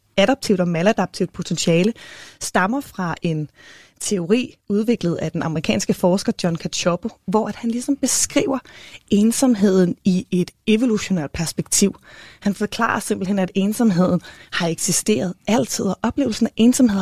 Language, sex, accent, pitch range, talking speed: Danish, female, native, 175-225 Hz, 130 wpm